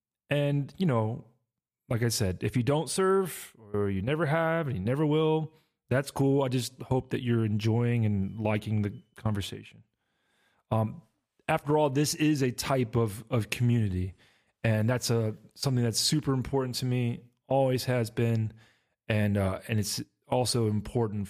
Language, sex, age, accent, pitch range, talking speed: English, male, 30-49, American, 105-130 Hz, 165 wpm